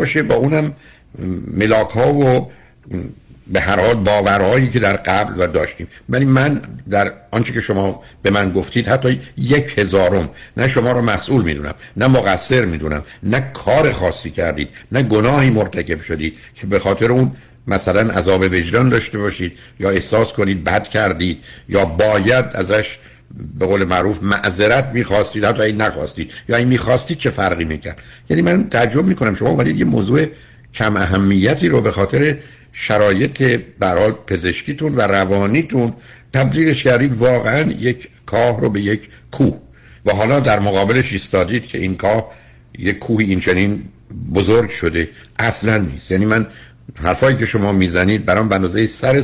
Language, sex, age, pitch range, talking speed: Persian, male, 60-79, 95-125 Hz, 150 wpm